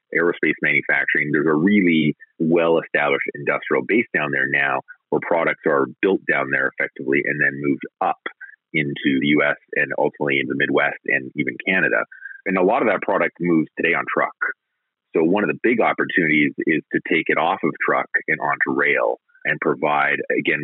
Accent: American